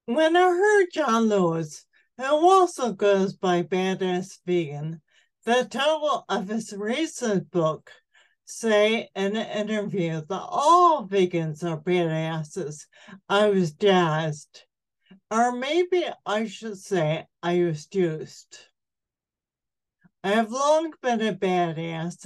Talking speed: 115 wpm